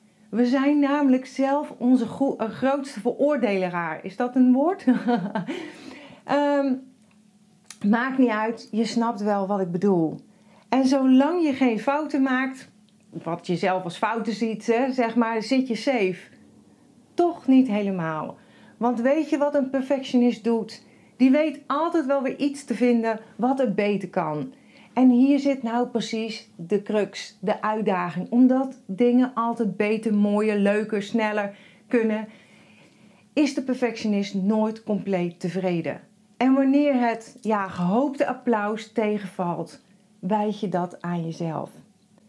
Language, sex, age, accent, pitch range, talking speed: Dutch, female, 40-59, Dutch, 205-260 Hz, 135 wpm